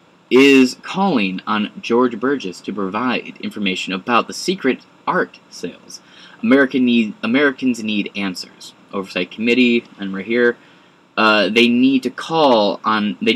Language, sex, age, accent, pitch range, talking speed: English, male, 20-39, American, 105-130 Hz, 135 wpm